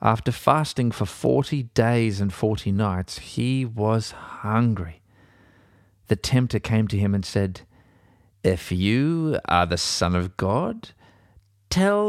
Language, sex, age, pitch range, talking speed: English, male, 40-59, 100-125 Hz, 130 wpm